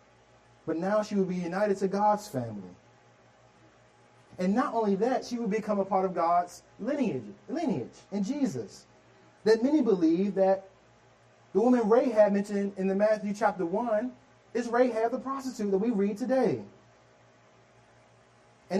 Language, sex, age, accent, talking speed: English, male, 30-49, American, 145 wpm